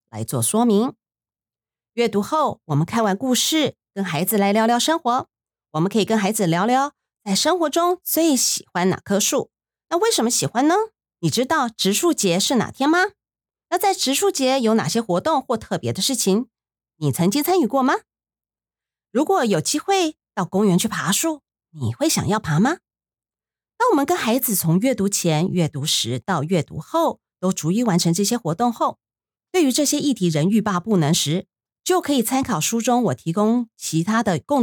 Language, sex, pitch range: Chinese, female, 180-275 Hz